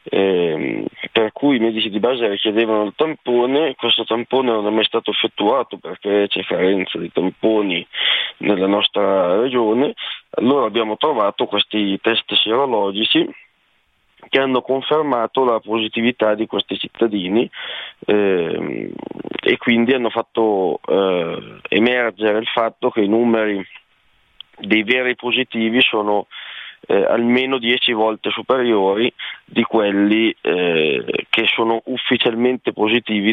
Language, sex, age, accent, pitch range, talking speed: Italian, male, 20-39, native, 105-125 Hz, 120 wpm